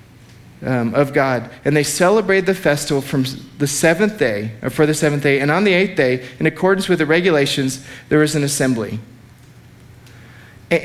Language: English